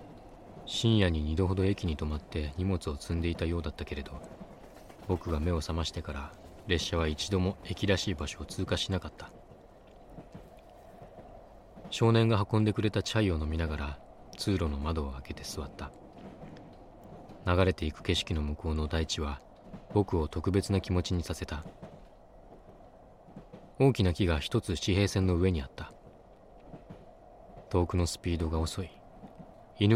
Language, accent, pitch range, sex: Japanese, native, 80-95 Hz, male